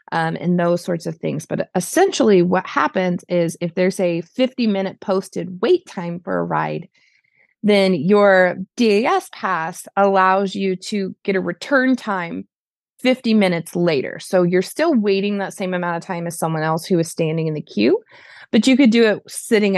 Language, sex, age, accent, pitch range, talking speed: English, female, 20-39, American, 175-210 Hz, 180 wpm